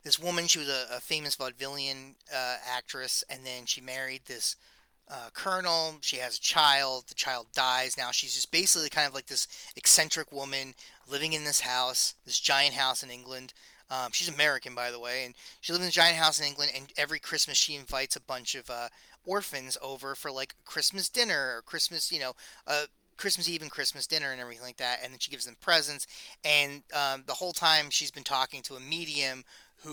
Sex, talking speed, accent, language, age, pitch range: male, 210 wpm, American, English, 30-49, 130-155 Hz